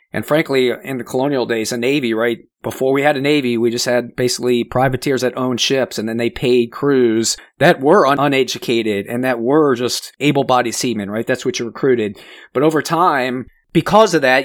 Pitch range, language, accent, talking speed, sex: 115-130 Hz, English, American, 195 wpm, male